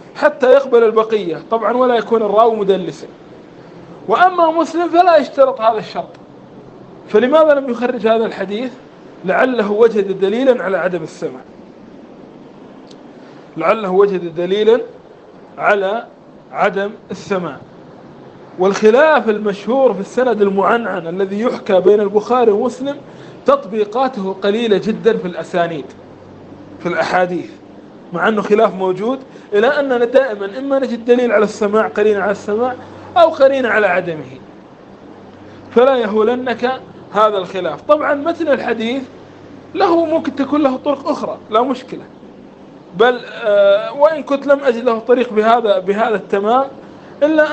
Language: Arabic